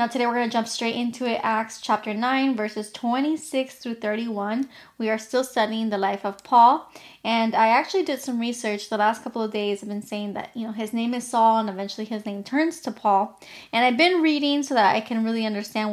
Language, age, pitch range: English, 10-29, 215-255 Hz